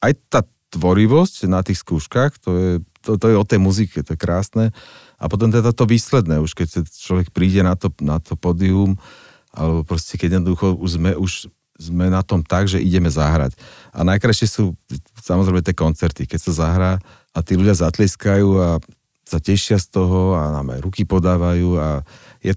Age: 40-59